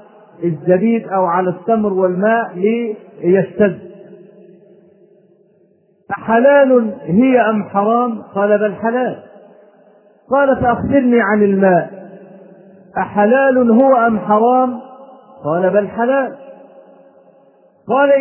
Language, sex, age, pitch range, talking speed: Arabic, male, 40-59, 195-250 Hz, 80 wpm